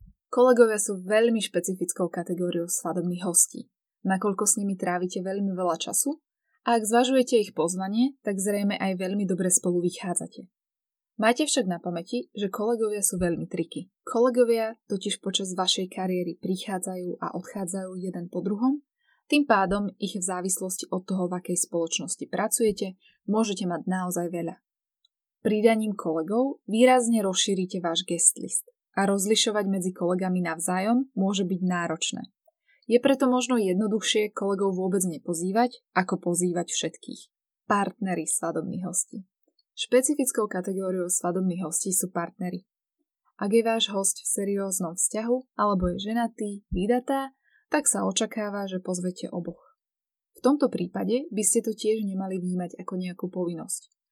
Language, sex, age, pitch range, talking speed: Slovak, female, 20-39, 180-230 Hz, 135 wpm